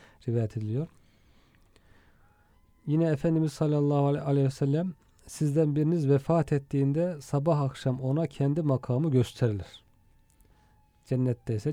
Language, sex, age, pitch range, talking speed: Turkish, male, 40-59, 120-145 Hz, 95 wpm